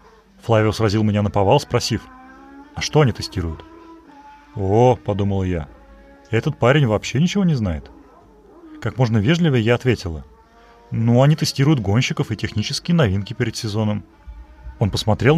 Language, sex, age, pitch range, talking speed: Russian, male, 30-49, 95-135 Hz, 135 wpm